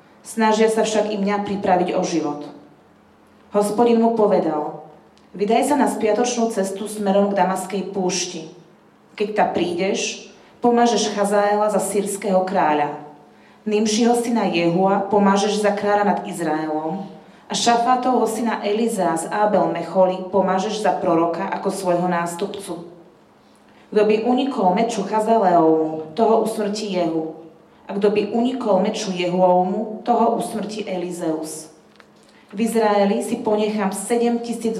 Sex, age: female, 30-49